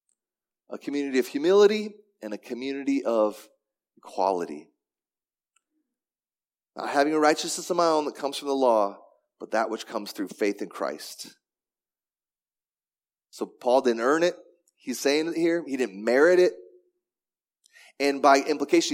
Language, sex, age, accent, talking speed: English, male, 30-49, American, 145 wpm